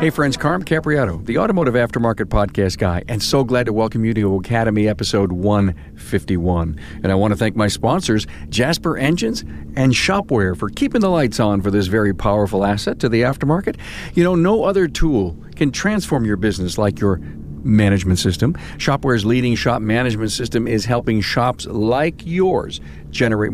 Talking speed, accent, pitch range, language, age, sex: 170 wpm, American, 95-125 Hz, English, 50-69, male